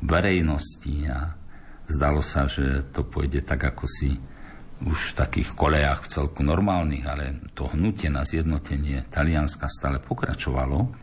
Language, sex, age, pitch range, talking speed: Slovak, male, 50-69, 70-85 Hz, 135 wpm